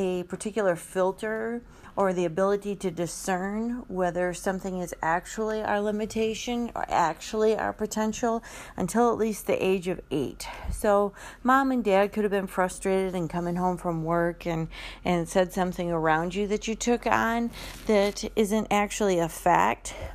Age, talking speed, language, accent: 40-59, 160 wpm, English, American